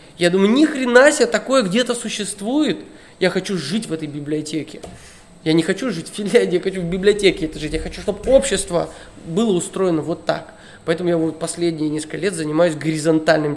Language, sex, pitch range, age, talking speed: Russian, male, 155-190 Hz, 20-39, 185 wpm